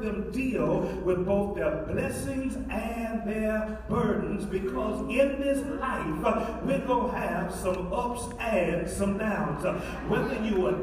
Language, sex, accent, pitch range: English, male, American, 200-255 Hz